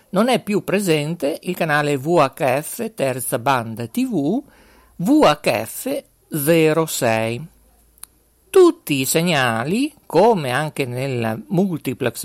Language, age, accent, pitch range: Italian, 50-69, native, 135-200 Hz